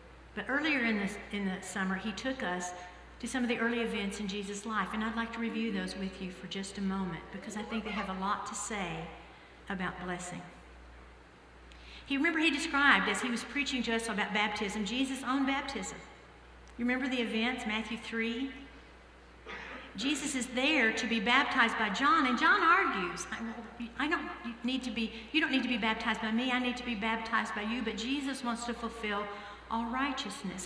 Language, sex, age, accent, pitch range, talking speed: English, female, 50-69, American, 190-240 Hz, 200 wpm